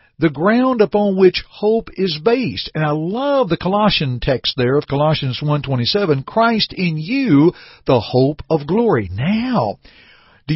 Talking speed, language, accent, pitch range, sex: 150 wpm, English, American, 135-190 Hz, male